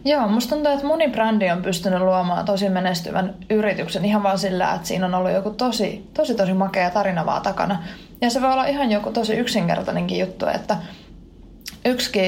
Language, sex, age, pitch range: Finnish, female, 20-39, 190-215 Hz